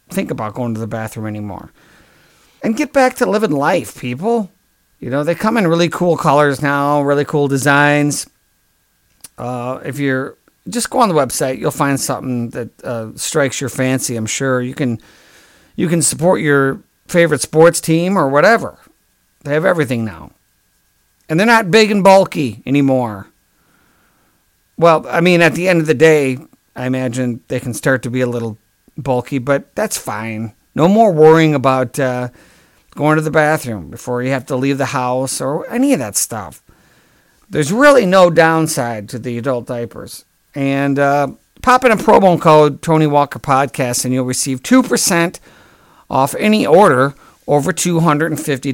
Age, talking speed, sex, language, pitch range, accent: 50-69, 170 wpm, male, English, 125-165 Hz, American